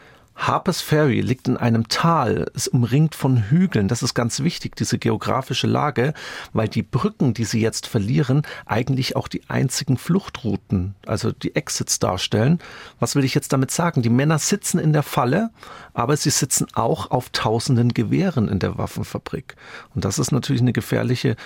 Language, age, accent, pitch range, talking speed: German, 40-59, German, 115-150 Hz, 170 wpm